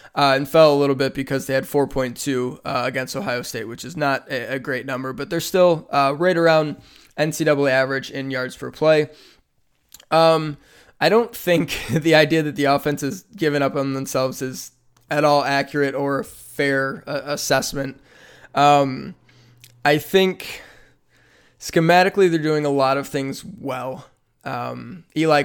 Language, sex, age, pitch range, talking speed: English, male, 20-39, 135-150 Hz, 160 wpm